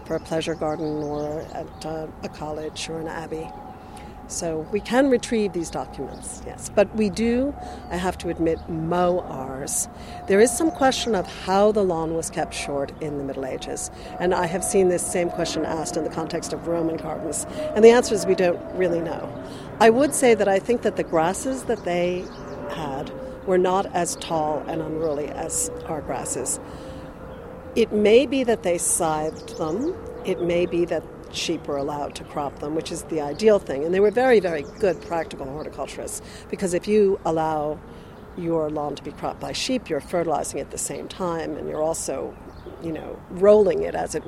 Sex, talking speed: female, 190 wpm